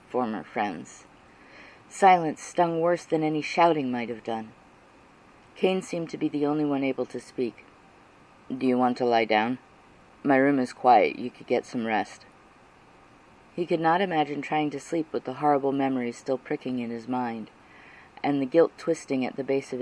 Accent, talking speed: American, 180 wpm